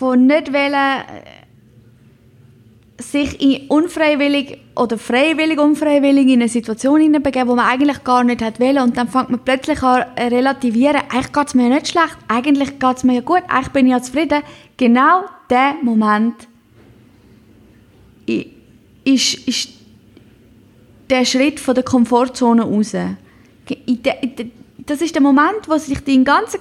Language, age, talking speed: German, 20-39, 155 wpm